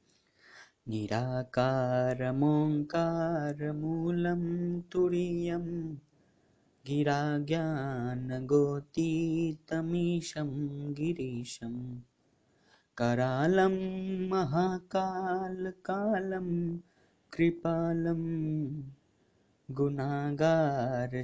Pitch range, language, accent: 130-165 Hz, Hindi, native